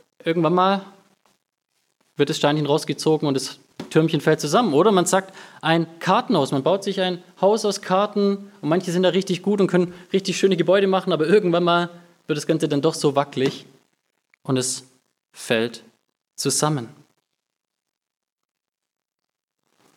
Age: 20-39